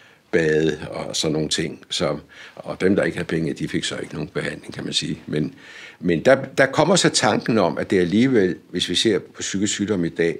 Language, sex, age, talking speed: Danish, male, 60-79, 225 wpm